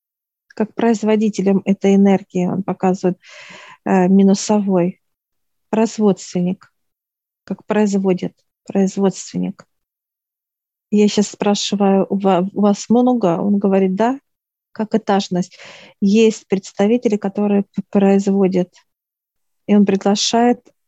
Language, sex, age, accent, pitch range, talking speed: Russian, female, 40-59, native, 190-220 Hz, 85 wpm